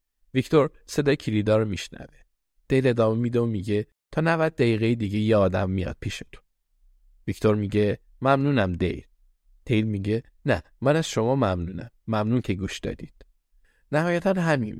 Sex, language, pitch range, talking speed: male, Persian, 95-125 Hz, 140 wpm